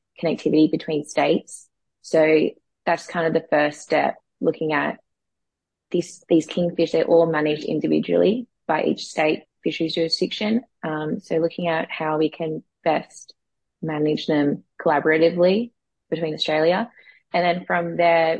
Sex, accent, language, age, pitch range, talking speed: female, Australian, English, 20-39, 150-170 Hz, 135 wpm